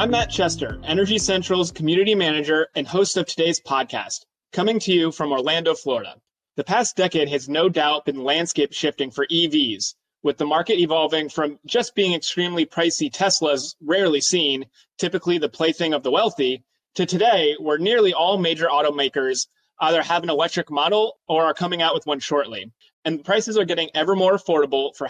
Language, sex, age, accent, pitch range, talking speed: English, male, 30-49, American, 150-185 Hz, 175 wpm